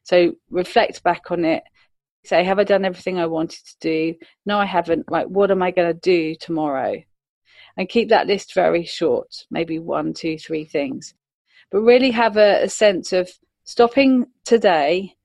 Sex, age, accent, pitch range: female, 40-59, British, 160-200 Hz